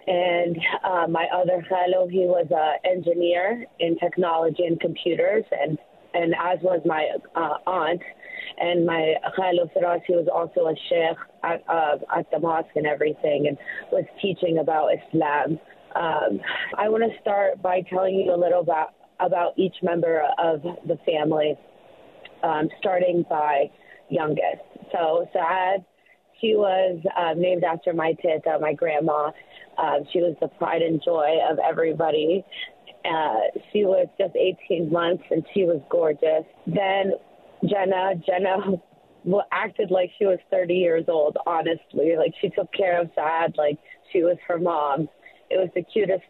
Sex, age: female, 30-49